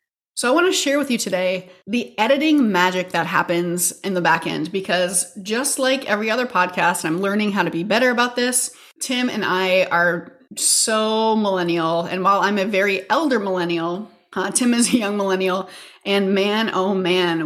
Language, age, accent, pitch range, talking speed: English, 30-49, American, 180-220 Hz, 185 wpm